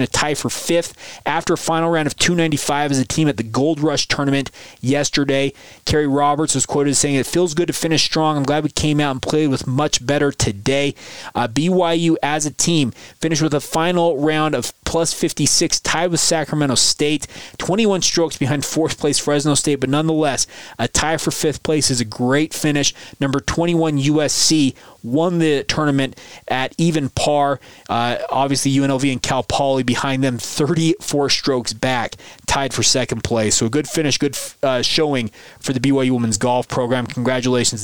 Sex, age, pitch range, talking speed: male, 20-39, 130-155 Hz, 180 wpm